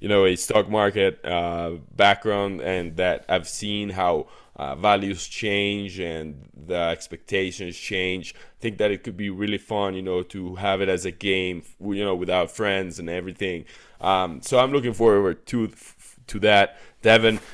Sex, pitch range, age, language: male, 95-110 Hz, 20-39, English